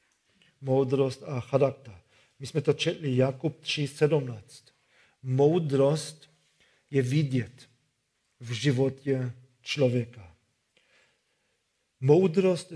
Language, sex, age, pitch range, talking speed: Czech, male, 50-69, 130-155 Hz, 75 wpm